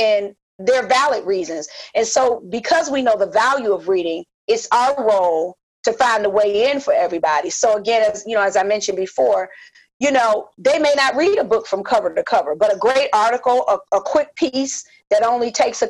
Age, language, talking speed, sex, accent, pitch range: 40-59, English, 210 wpm, female, American, 200-270 Hz